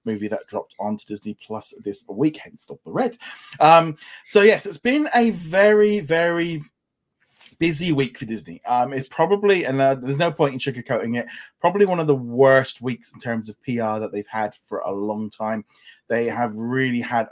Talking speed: 195 wpm